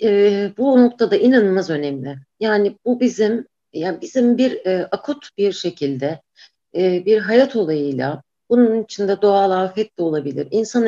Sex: female